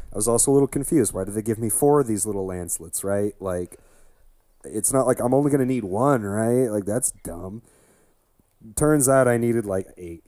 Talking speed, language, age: 210 wpm, English, 30-49